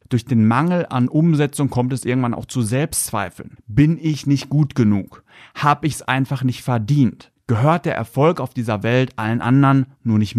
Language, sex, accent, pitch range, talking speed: German, male, German, 115-150 Hz, 185 wpm